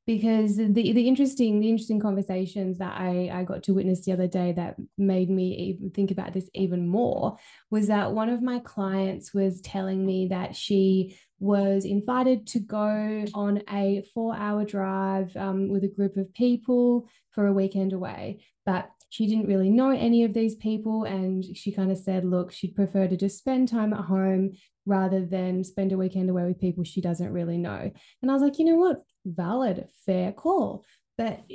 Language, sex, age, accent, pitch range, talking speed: English, female, 20-39, Australian, 190-220 Hz, 190 wpm